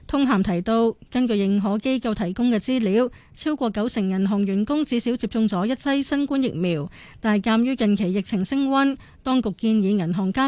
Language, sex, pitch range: Chinese, female, 205-255 Hz